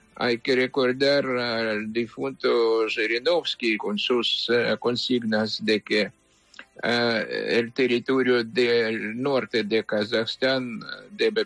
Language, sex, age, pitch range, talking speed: English, male, 50-69, 120-170 Hz, 105 wpm